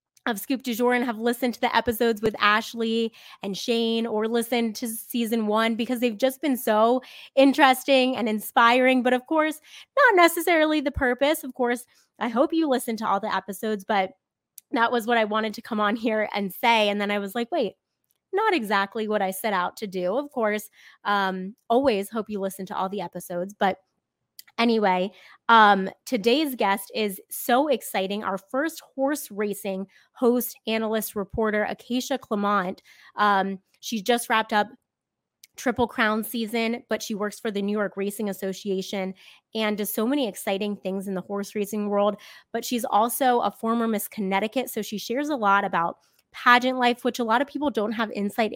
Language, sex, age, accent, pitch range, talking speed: English, female, 20-39, American, 205-245 Hz, 185 wpm